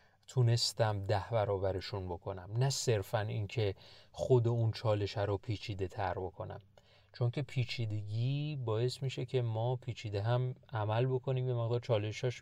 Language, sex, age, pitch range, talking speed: Persian, male, 30-49, 105-130 Hz, 135 wpm